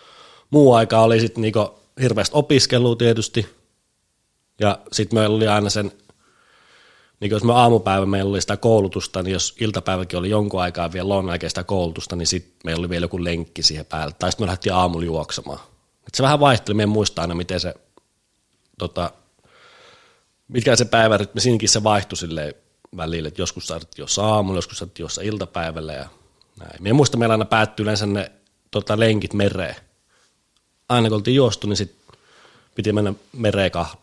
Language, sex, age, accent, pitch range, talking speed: Finnish, male, 30-49, native, 90-115 Hz, 160 wpm